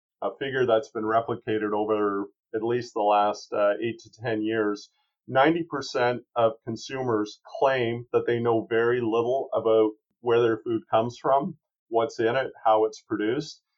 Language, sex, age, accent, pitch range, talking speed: English, male, 40-59, American, 110-125 Hz, 155 wpm